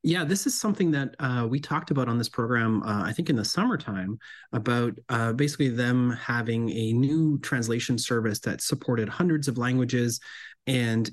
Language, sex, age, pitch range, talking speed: English, male, 30-49, 115-150 Hz, 180 wpm